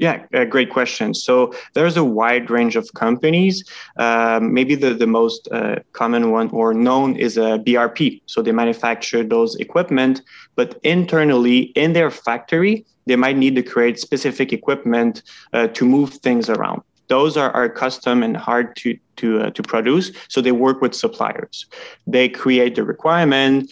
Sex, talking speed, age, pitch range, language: male, 170 wpm, 20-39, 115-140 Hz, English